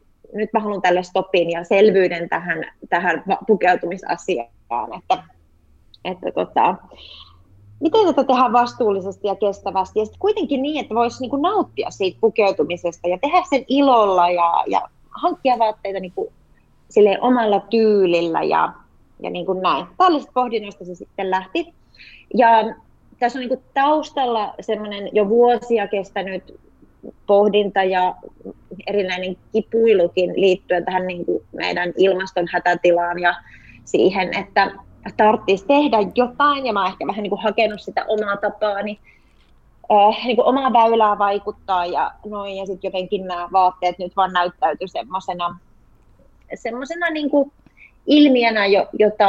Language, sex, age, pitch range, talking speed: Finnish, female, 30-49, 180-235 Hz, 125 wpm